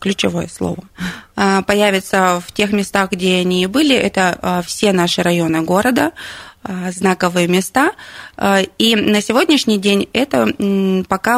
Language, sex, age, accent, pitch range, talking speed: Russian, female, 20-39, native, 180-210 Hz, 120 wpm